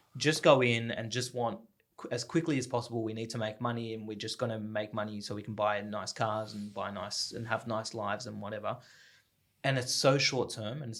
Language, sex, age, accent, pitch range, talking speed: English, male, 20-39, Australian, 110-125 Hz, 235 wpm